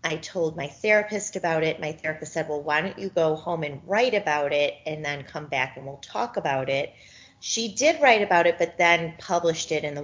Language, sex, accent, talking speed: English, female, American, 235 wpm